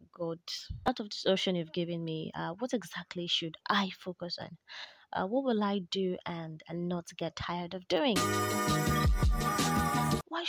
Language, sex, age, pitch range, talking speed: English, female, 20-39, 175-230 Hz, 160 wpm